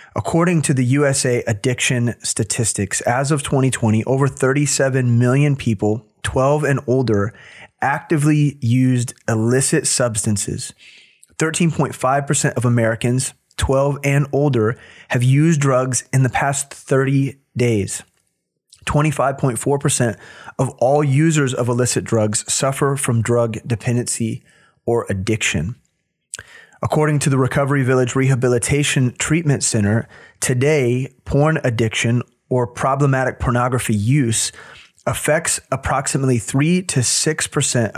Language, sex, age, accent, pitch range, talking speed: English, male, 30-49, American, 120-140 Hz, 105 wpm